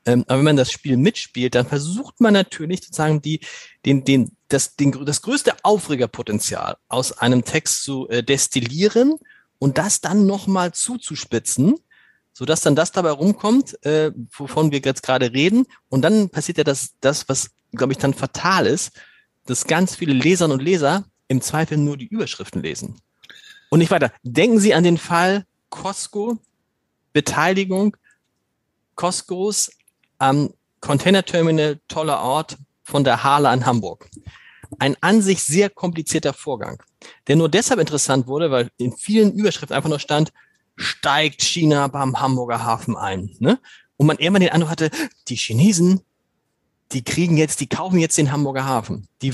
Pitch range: 135-185 Hz